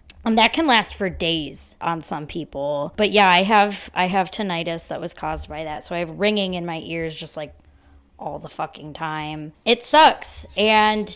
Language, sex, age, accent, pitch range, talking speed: English, female, 10-29, American, 165-210 Hz, 195 wpm